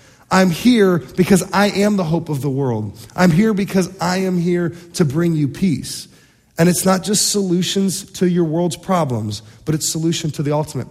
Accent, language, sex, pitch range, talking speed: American, English, male, 145-190 Hz, 195 wpm